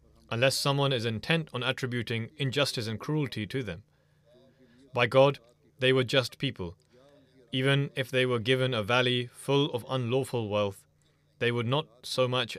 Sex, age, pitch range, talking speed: male, 30-49, 115-140 Hz, 155 wpm